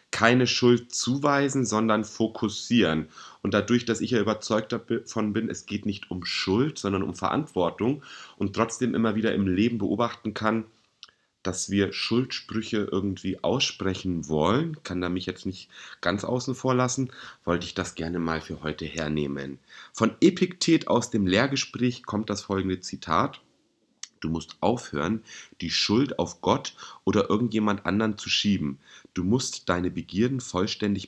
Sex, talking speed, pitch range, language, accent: male, 150 wpm, 95-120 Hz, German, German